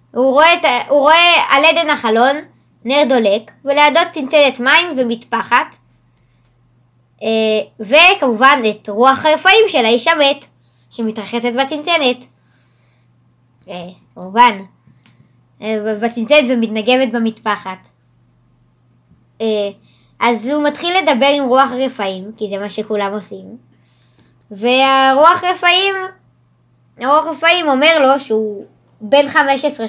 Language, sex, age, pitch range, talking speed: Hebrew, male, 20-39, 200-285 Hz, 85 wpm